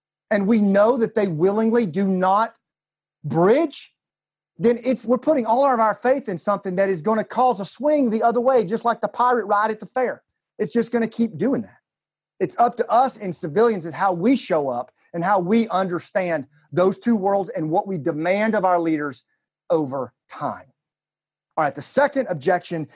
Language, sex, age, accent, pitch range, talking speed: English, male, 30-49, American, 170-225 Hz, 195 wpm